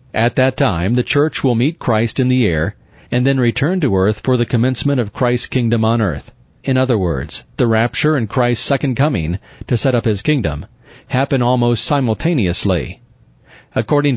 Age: 40-59